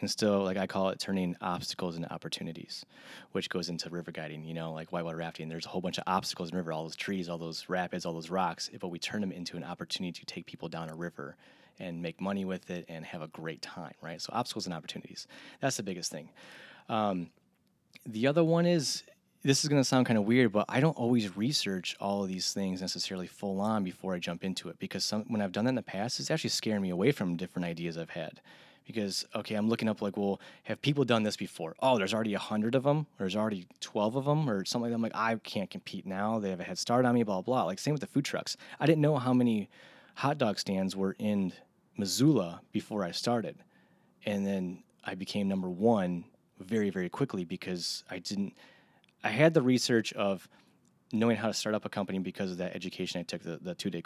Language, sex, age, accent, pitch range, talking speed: English, male, 20-39, American, 90-115 Hz, 240 wpm